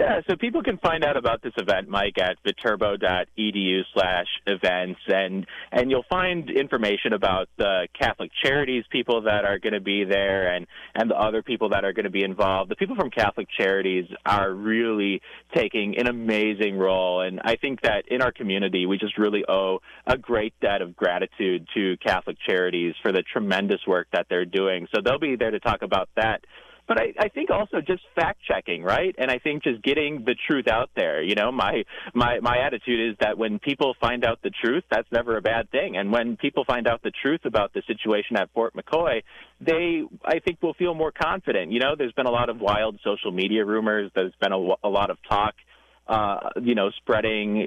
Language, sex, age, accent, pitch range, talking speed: English, male, 30-49, American, 95-130 Hz, 205 wpm